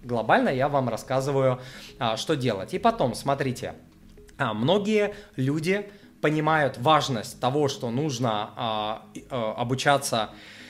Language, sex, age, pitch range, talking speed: Russian, male, 20-39, 120-160 Hz, 95 wpm